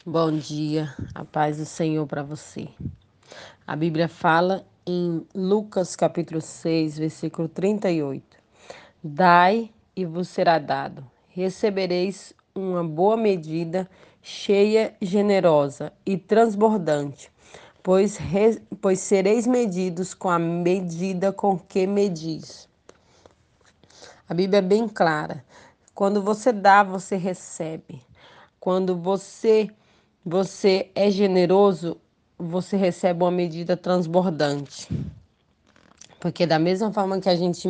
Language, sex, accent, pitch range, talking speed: Portuguese, female, Brazilian, 165-195 Hz, 105 wpm